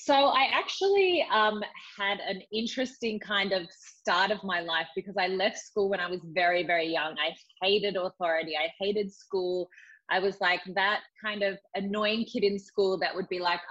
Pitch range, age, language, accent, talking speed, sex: 175-220 Hz, 20-39, English, Australian, 190 wpm, female